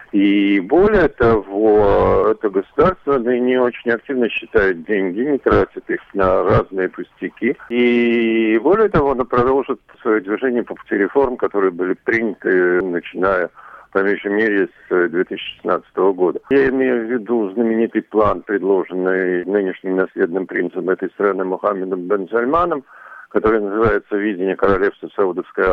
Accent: native